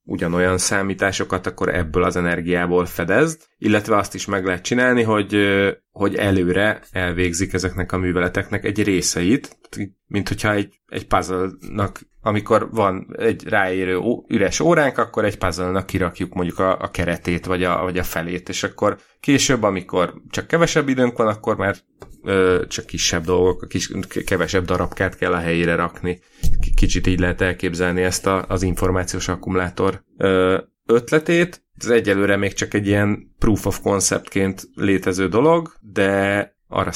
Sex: male